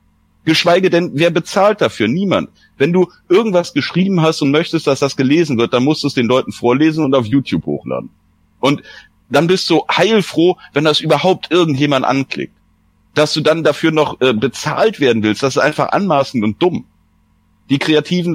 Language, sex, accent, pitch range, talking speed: German, male, German, 130-170 Hz, 180 wpm